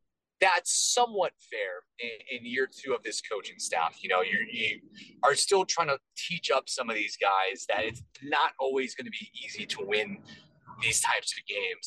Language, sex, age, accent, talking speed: English, male, 30-49, American, 190 wpm